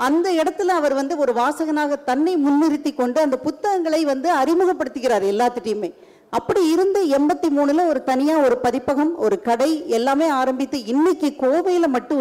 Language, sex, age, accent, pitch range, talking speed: Tamil, female, 50-69, native, 250-330 Hz, 140 wpm